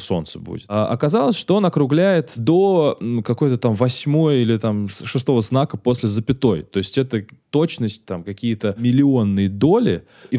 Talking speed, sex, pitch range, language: 150 wpm, male, 110-135 Hz, Russian